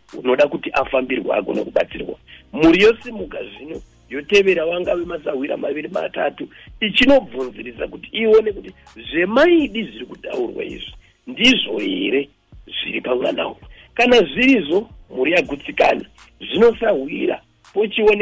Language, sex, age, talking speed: English, male, 50-69, 100 wpm